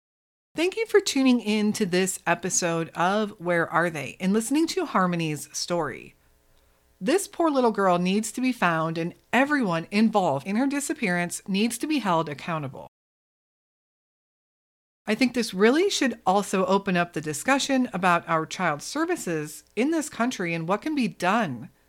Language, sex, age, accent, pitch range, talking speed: English, female, 40-59, American, 160-230 Hz, 160 wpm